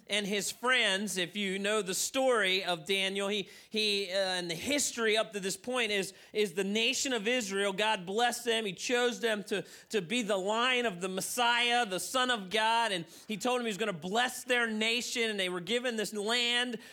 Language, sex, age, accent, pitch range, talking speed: English, male, 30-49, American, 200-250 Hz, 215 wpm